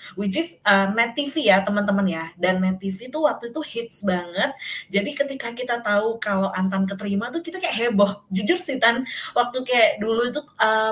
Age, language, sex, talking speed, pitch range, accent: 20-39, Indonesian, female, 190 wpm, 195-260 Hz, native